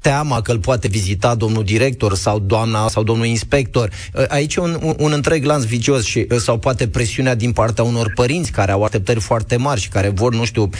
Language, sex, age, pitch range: Romanian, male, 20-39, 120-160 Hz